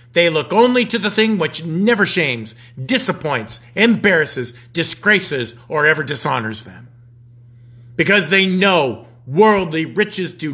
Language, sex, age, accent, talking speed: English, male, 50-69, American, 125 wpm